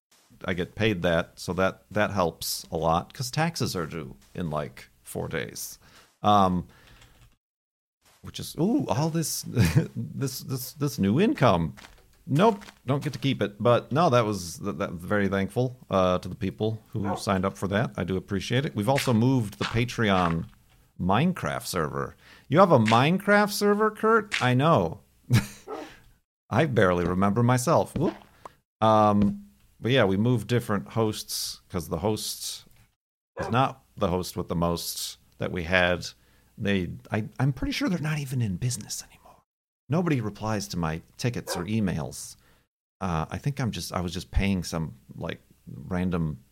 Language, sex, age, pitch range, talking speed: English, male, 50-69, 90-125 Hz, 160 wpm